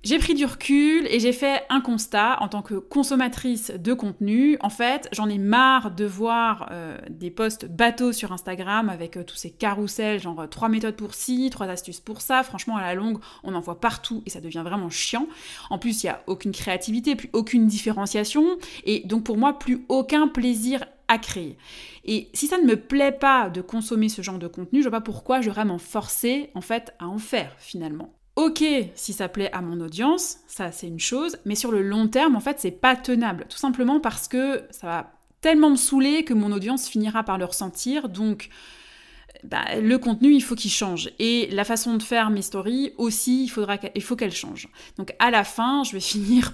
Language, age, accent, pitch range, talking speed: French, 20-39, French, 200-260 Hz, 215 wpm